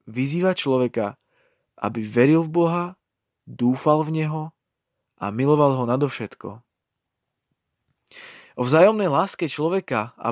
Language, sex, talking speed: Slovak, male, 105 wpm